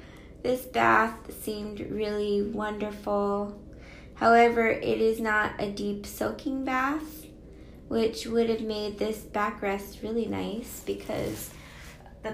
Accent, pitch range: American, 205-250 Hz